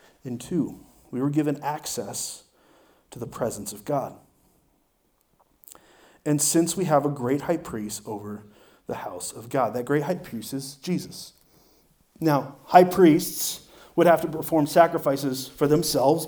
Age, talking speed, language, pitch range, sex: 30-49, 150 wpm, English, 140-170 Hz, male